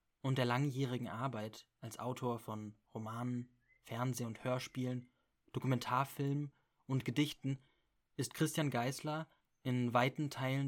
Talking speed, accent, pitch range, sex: 110 wpm, German, 115-135 Hz, male